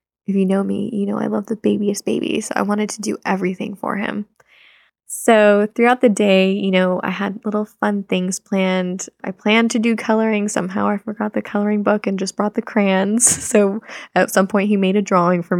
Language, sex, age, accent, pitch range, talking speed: English, female, 10-29, American, 190-220 Hz, 215 wpm